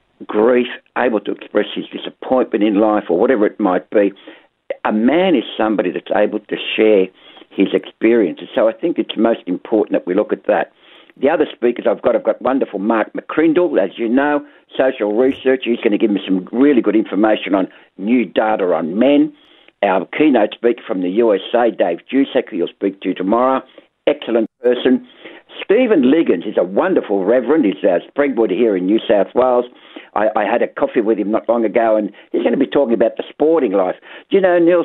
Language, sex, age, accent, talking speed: English, male, 60-79, Australian, 200 wpm